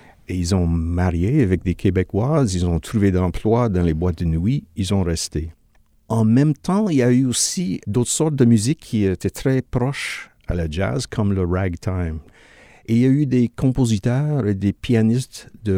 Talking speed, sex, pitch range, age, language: 200 wpm, male, 90-125 Hz, 50-69, French